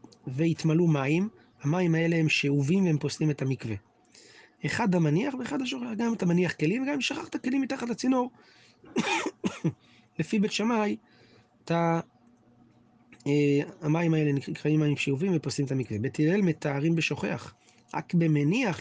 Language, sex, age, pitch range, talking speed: Hebrew, male, 30-49, 140-175 Hz, 110 wpm